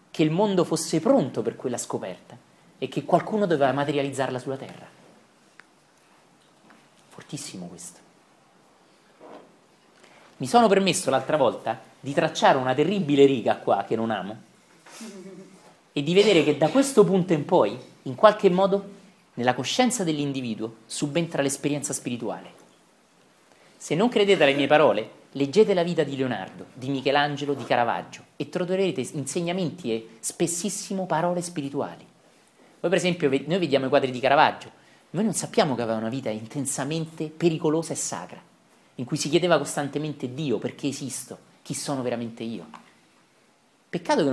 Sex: male